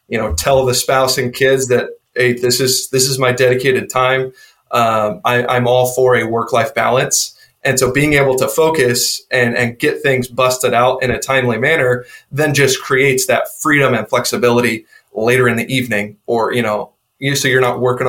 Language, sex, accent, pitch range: English, male, American, 120-140 Hz